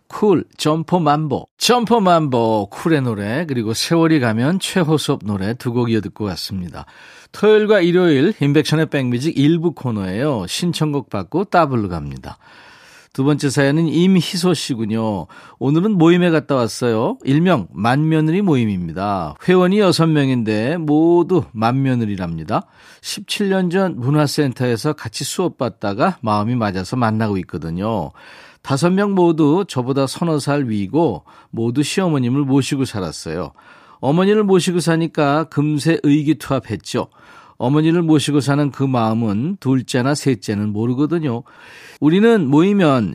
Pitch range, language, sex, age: 115-165 Hz, Korean, male, 40-59